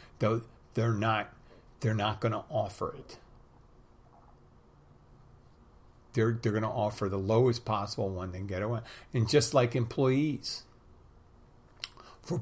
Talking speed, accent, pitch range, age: 125 wpm, American, 100-125 Hz, 50-69